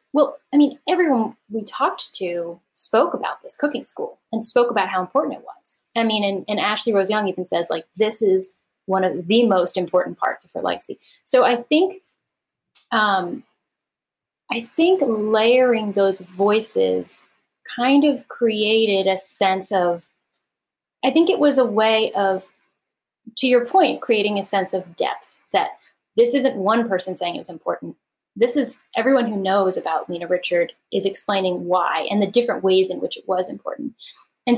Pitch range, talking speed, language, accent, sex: 190-255 Hz, 175 wpm, English, American, female